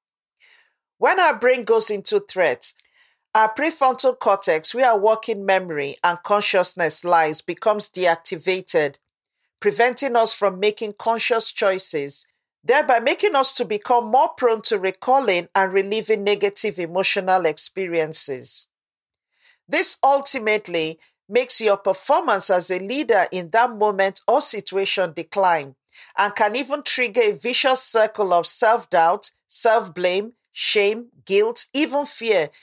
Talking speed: 120 wpm